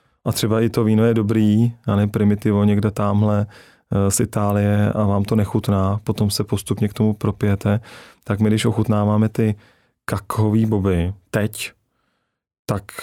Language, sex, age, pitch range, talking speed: Czech, male, 30-49, 100-110 Hz, 155 wpm